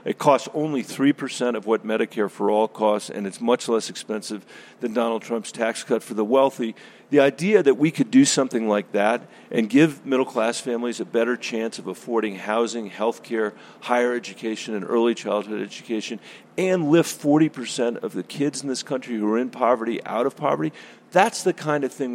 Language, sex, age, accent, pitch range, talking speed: English, male, 40-59, American, 110-135 Hz, 190 wpm